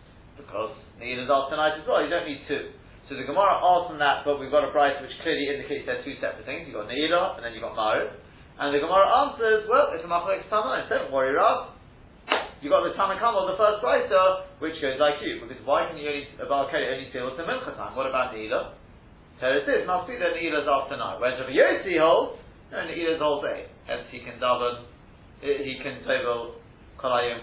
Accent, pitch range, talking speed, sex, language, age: British, 130-180 Hz, 225 wpm, male, English, 30-49